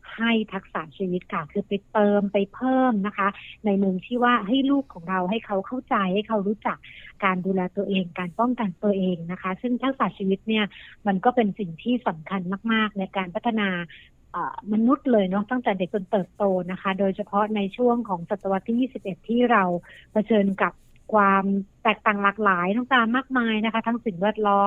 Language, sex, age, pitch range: Thai, female, 60-79, 195-230 Hz